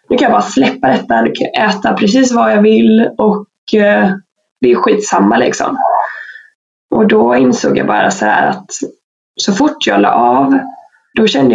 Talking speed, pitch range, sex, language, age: 175 wpm, 195-260 Hz, female, English, 20-39